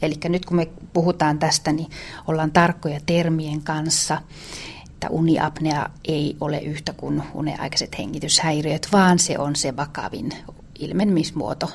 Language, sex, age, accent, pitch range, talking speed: Finnish, female, 30-49, native, 150-170 Hz, 130 wpm